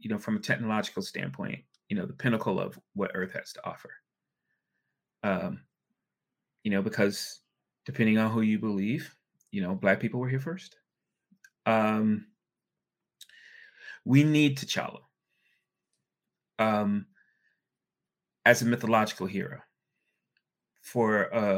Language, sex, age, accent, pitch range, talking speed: English, male, 30-49, American, 105-165 Hz, 115 wpm